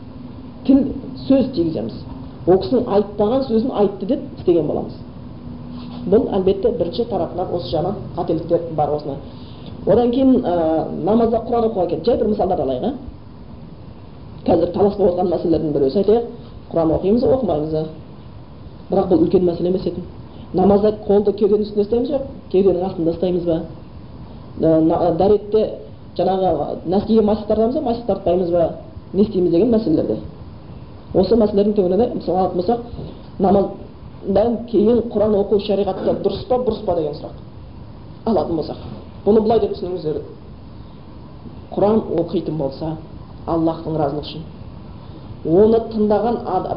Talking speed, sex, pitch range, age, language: 95 wpm, female, 165-220 Hz, 30-49, Bulgarian